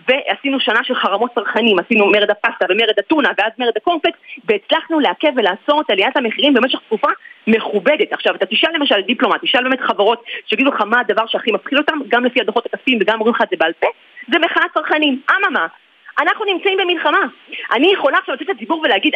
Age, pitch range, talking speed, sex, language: 30-49, 230-330 Hz, 190 wpm, female, Hebrew